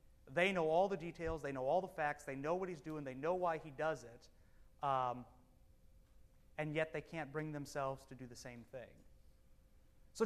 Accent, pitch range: American, 120-195 Hz